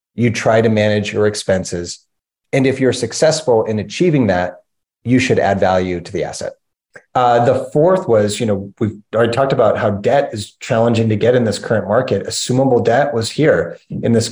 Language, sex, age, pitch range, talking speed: English, male, 30-49, 110-135 Hz, 195 wpm